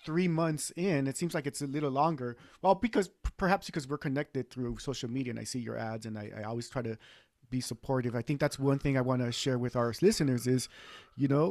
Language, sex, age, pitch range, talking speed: English, male, 30-49, 125-155 Hz, 245 wpm